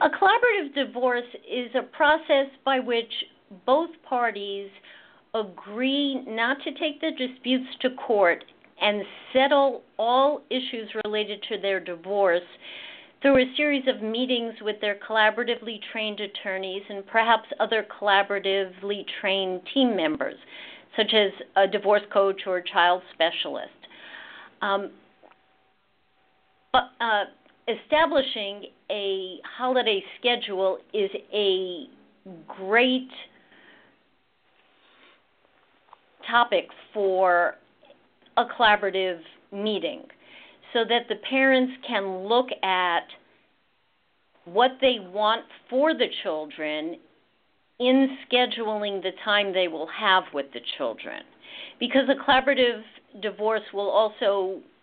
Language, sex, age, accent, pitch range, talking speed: English, female, 50-69, American, 200-265 Hz, 105 wpm